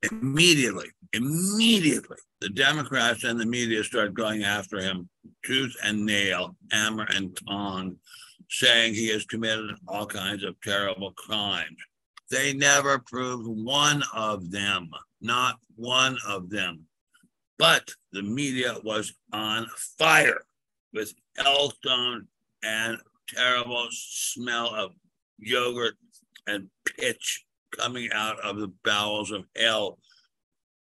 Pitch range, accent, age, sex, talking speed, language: 105-130 Hz, American, 60-79, male, 115 wpm, English